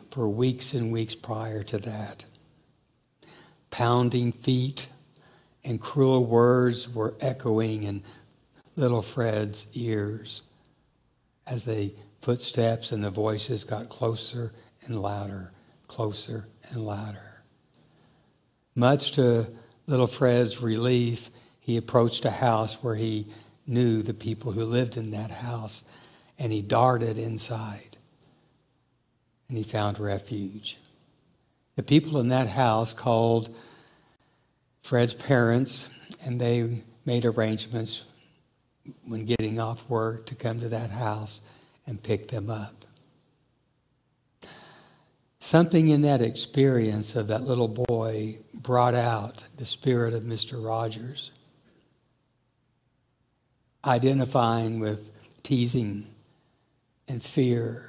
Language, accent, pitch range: English, American, 110-125 Hz